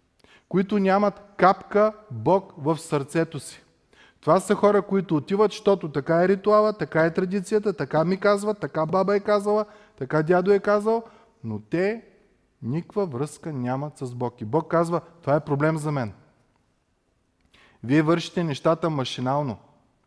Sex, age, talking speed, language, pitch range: male, 30-49, 145 wpm, Bulgarian, 130-180 Hz